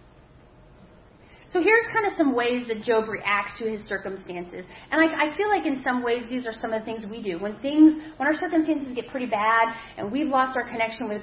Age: 30-49